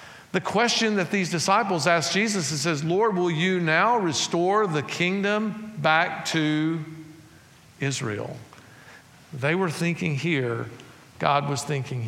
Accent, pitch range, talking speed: American, 135-180 Hz, 130 wpm